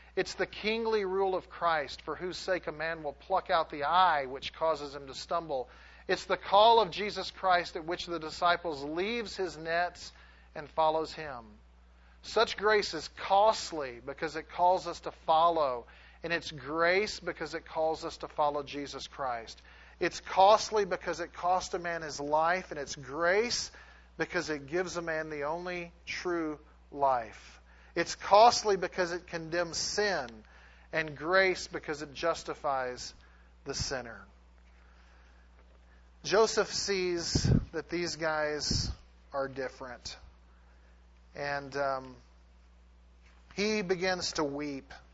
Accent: American